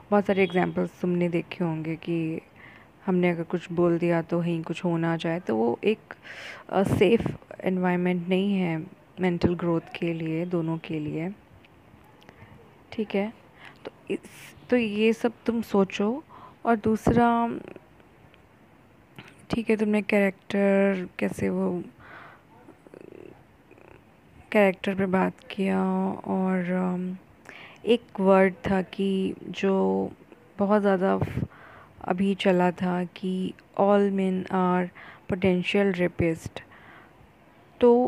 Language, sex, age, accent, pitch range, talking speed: Hindi, female, 20-39, native, 175-210 Hz, 115 wpm